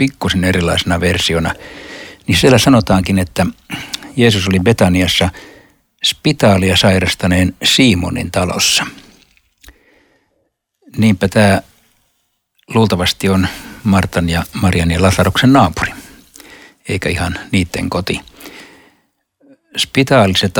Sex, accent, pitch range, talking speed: male, native, 85-105 Hz, 85 wpm